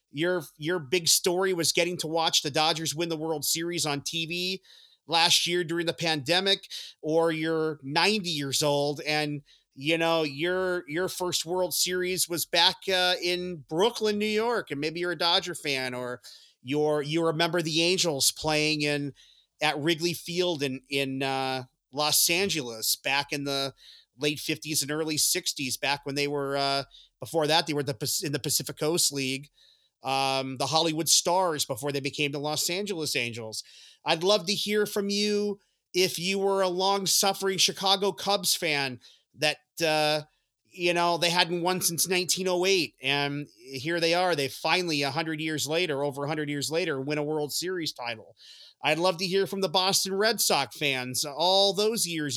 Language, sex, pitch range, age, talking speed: English, male, 140-180 Hz, 40-59, 175 wpm